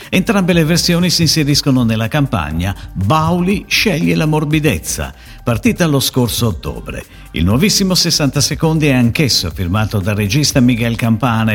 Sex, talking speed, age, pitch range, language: male, 135 wpm, 50-69, 100-155 Hz, Italian